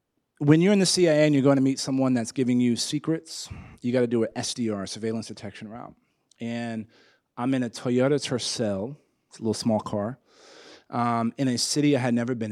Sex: male